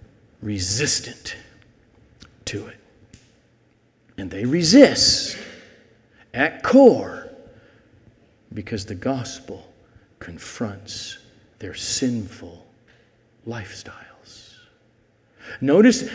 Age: 50-69